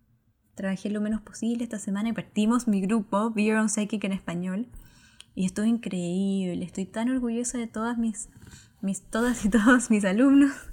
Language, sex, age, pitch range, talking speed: Spanish, female, 10-29, 180-220 Hz, 160 wpm